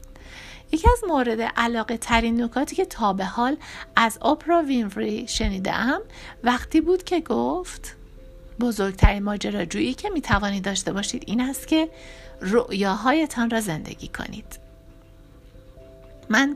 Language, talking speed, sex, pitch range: Persian, 120 wpm, female, 195-250 Hz